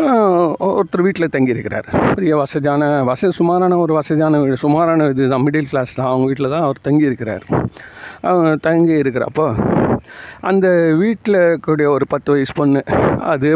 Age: 50-69